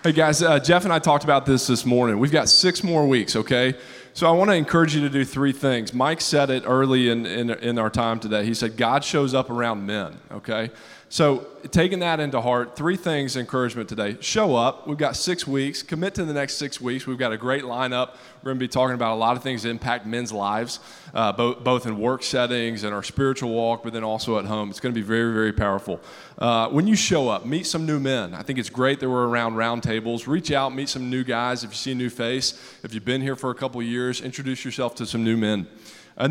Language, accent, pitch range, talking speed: English, American, 115-140 Hz, 255 wpm